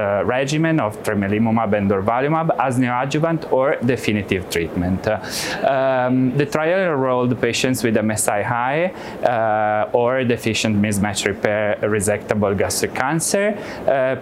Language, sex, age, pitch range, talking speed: English, male, 20-39, 115-150 Hz, 120 wpm